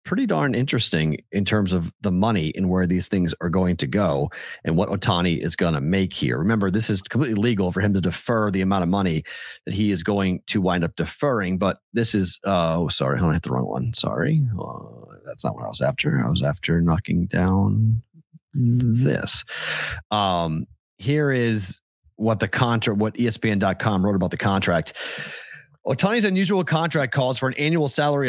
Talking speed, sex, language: 190 wpm, male, English